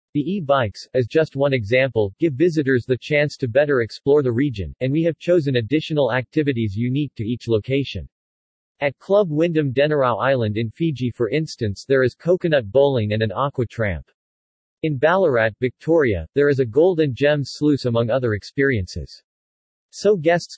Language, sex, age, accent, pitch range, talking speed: English, male, 40-59, American, 115-150 Hz, 165 wpm